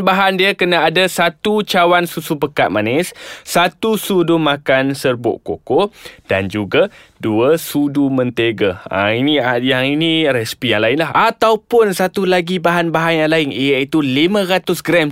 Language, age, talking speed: Malay, 20-39, 145 wpm